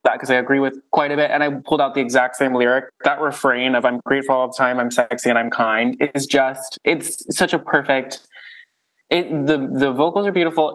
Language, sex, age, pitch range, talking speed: English, male, 20-39, 120-145 Hz, 230 wpm